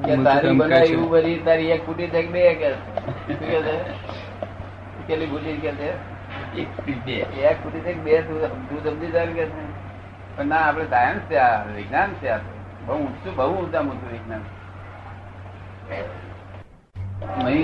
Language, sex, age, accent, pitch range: Gujarati, male, 60-79, native, 95-130 Hz